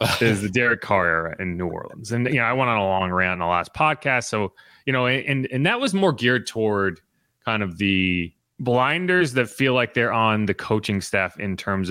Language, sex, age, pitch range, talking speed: English, male, 30-49, 110-155 Hz, 225 wpm